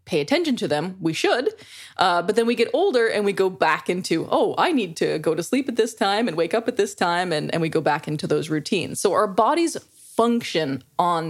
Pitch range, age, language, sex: 160-210 Hz, 20-39, English, female